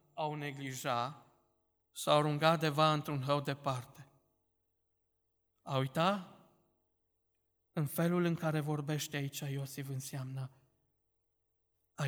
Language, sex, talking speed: Romanian, male, 95 wpm